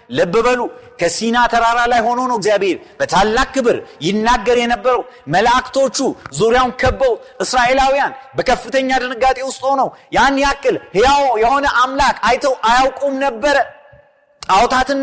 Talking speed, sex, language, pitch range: 110 wpm, male, Amharic, 205-280 Hz